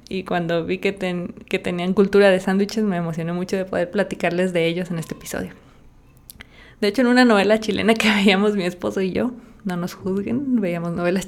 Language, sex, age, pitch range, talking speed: Spanish, female, 20-39, 170-215 Hz, 200 wpm